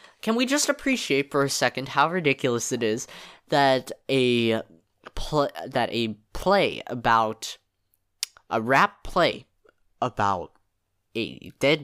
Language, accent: English, American